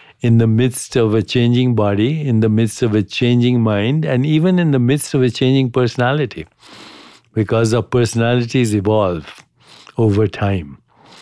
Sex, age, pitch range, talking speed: male, 60-79, 105-120 Hz, 155 wpm